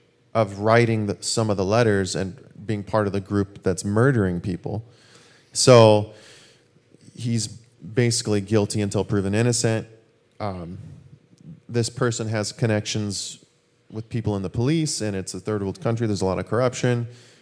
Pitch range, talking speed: 100-120 Hz, 145 wpm